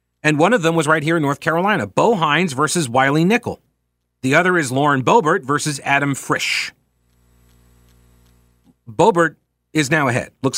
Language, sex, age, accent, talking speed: English, male, 40-59, American, 160 wpm